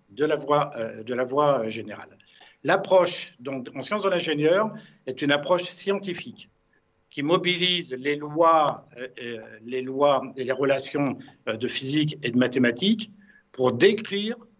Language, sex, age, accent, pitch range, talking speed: French, male, 60-79, French, 130-190 Hz, 120 wpm